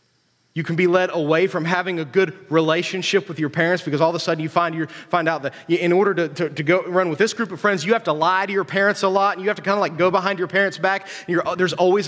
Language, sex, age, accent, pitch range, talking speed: English, male, 30-49, American, 160-215 Hz, 305 wpm